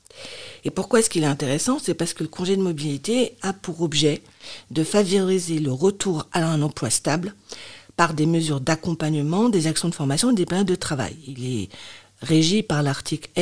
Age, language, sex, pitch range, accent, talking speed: 50-69, French, female, 155-210 Hz, French, 190 wpm